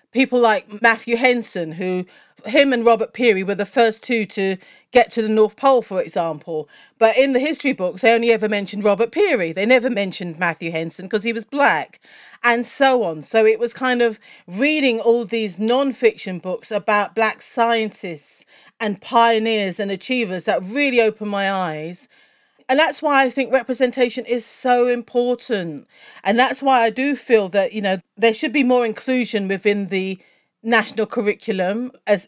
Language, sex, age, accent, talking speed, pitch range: English, female, 40-59, British, 175 wpm, 190-245 Hz